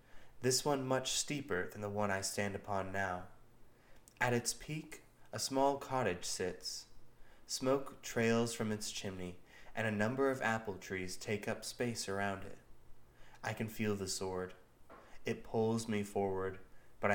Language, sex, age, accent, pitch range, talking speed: English, male, 20-39, American, 95-120 Hz, 155 wpm